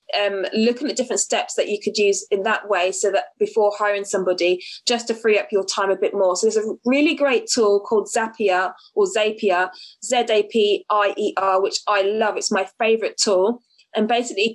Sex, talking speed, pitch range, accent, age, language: female, 190 wpm, 210-265 Hz, British, 20-39, English